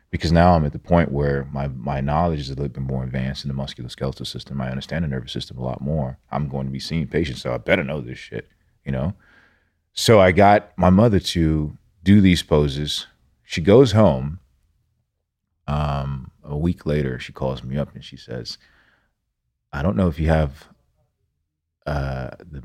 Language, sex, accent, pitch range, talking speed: English, male, American, 70-90 Hz, 195 wpm